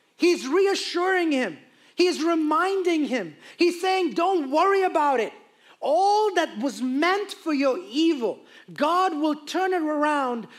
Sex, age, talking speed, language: male, 30-49, 135 wpm, English